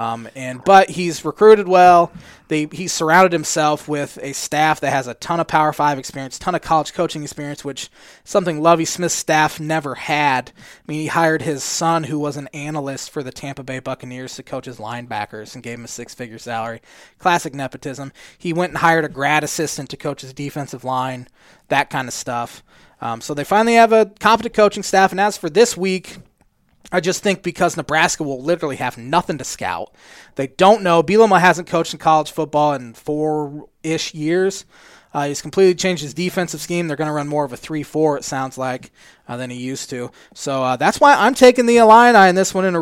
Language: English